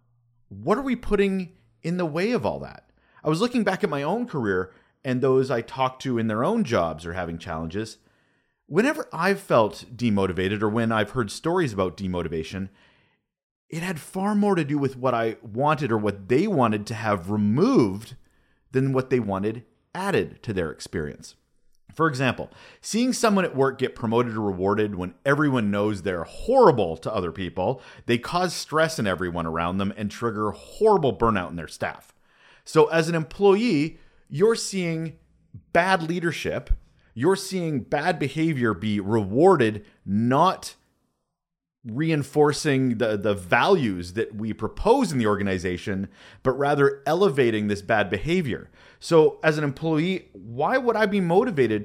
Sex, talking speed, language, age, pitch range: male, 160 wpm, English, 30-49, 105-165 Hz